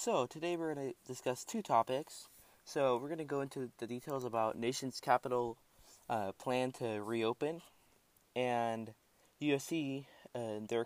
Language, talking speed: English, 145 wpm